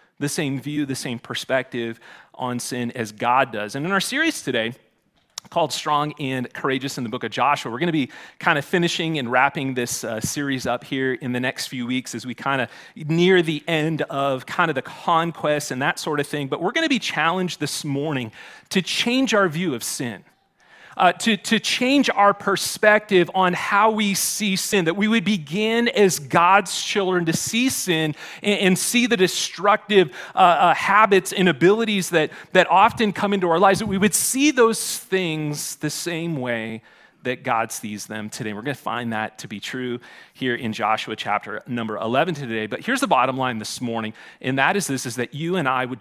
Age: 30-49